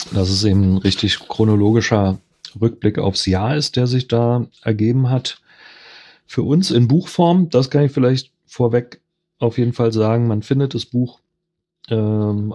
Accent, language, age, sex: German, German, 30-49, male